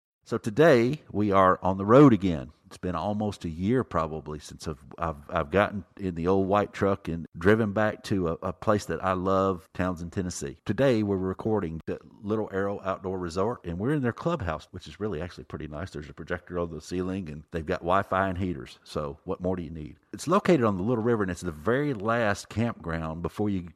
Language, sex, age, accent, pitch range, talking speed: English, male, 50-69, American, 90-115 Hz, 215 wpm